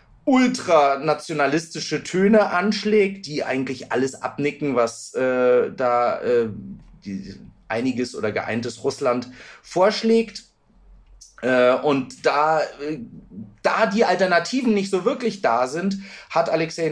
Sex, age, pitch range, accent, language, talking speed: male, 30-49, 140-195 Hz, German, German, 110 wpm